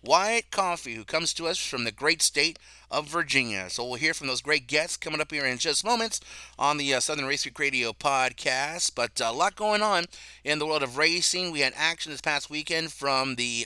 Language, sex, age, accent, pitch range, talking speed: English, male, 30-49, American, 135-170 Hz, 230 wpm